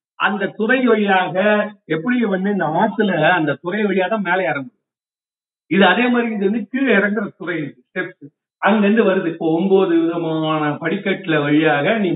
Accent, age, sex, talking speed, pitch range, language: native, 50-69, male, 125 wpm, 155-220 Hz, Tamil